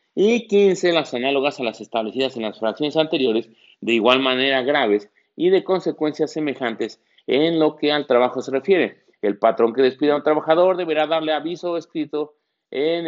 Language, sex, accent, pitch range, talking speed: Spanish, male, Mexican, 125-165 Hz, 175 wpm